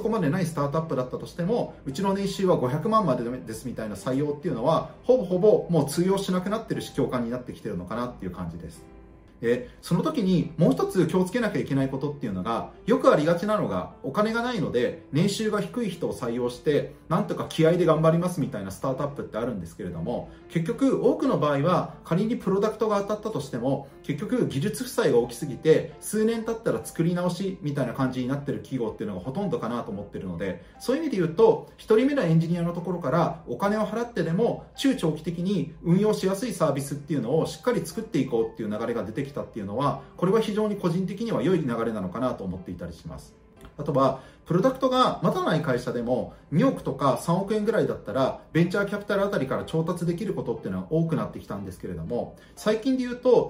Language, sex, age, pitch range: Japanese, male, 30-49, 145-220 Hz